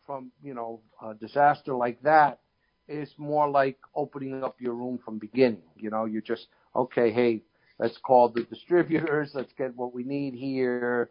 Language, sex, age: English, male, 50-69